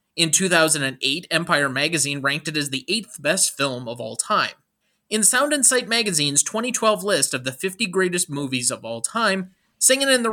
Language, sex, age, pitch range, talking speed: English, male, 30-49, 140-220 Hz, 185 wpm